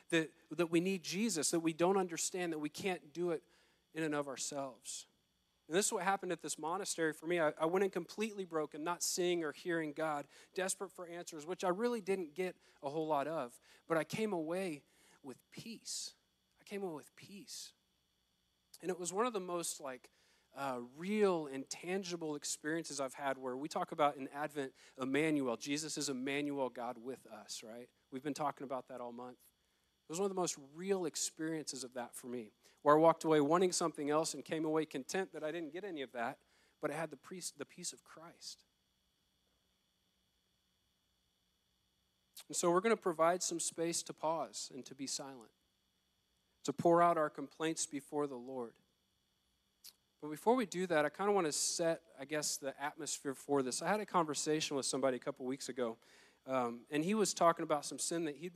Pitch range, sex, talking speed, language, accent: 135-175 Hz, male, 200 wpm, English, American